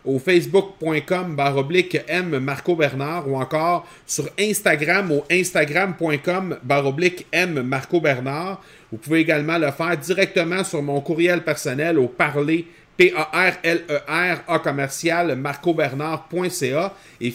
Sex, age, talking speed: male, 40-59, 120 wpm